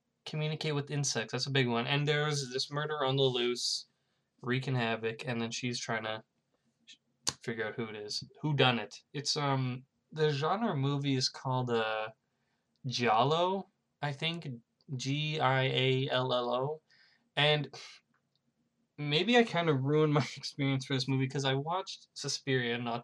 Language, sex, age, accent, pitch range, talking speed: English, male, 20-39, American, 120-145 Hz, 160 wpm